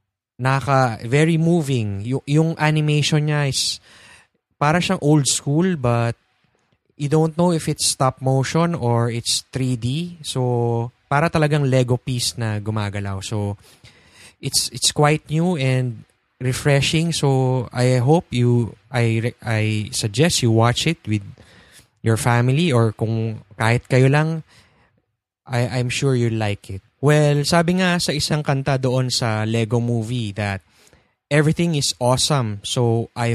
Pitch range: 115-145 Hz